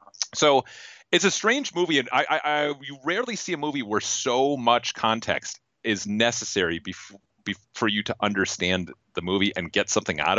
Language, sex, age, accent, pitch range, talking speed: English, male, 30-49, American, 105-145 Hz, 185 wpm